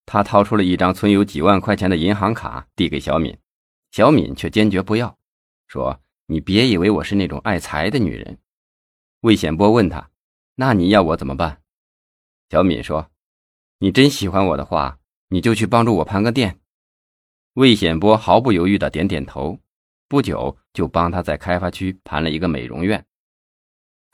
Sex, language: male, Chinese